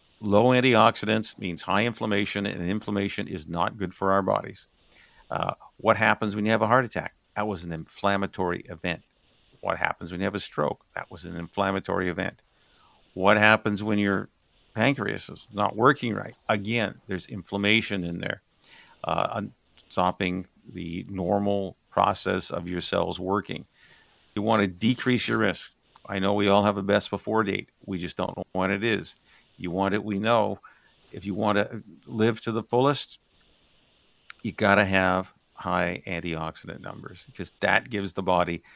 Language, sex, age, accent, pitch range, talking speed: English, male, 50-69, American, 95-110 Hz, 170 wpm